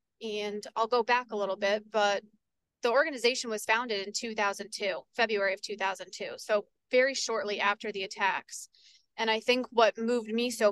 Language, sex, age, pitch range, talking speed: English, female, 20-39, 205-225 Hz, 170 wpm